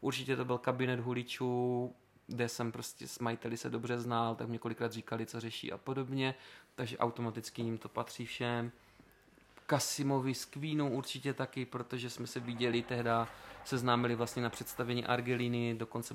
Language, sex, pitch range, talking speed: Czech, male, 115-125 Hz, 160 wpm